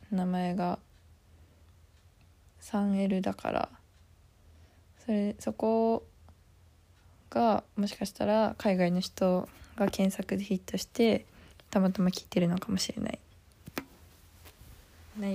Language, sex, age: Japanese, female, 20-39